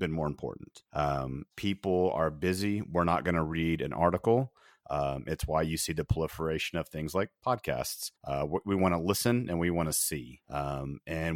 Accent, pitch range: American, 80-95 Hz